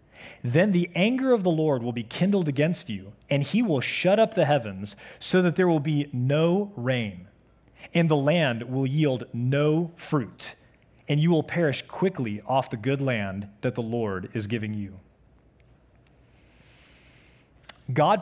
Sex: male